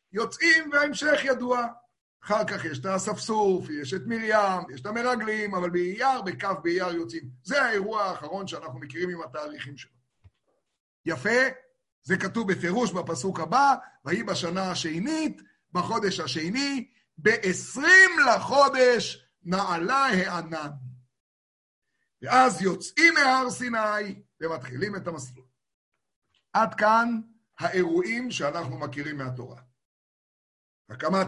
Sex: male